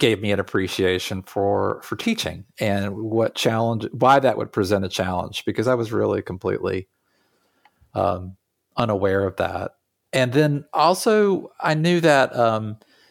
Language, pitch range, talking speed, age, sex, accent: English, 95-120 Hz, 145 wpm, 40-59, male, American